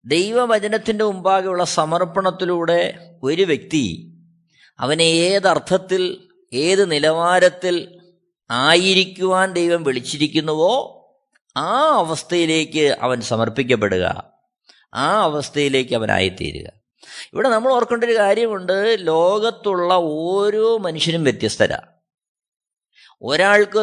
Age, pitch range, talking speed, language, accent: 20-39, 165-205 Hz, 75 wpm, Malayalam, native